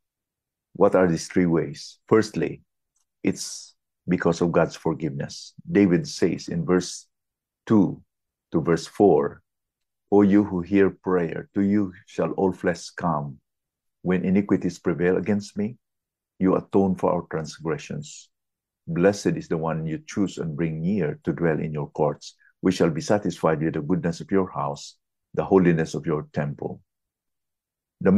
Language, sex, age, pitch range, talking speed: English, male, 50-69, 80-95 Hz, 150 wpm